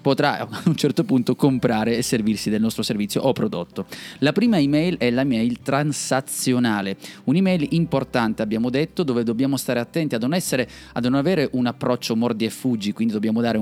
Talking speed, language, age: 185 wpm, Italian, 30-49